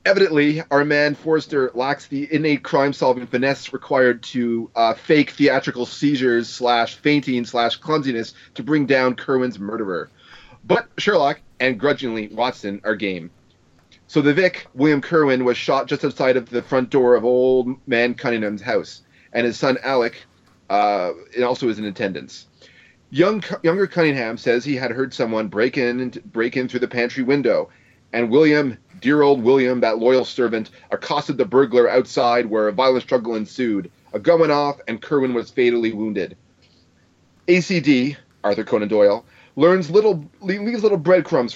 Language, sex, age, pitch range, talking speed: English, male, 30-49, 120-150 Hz, 150 wpm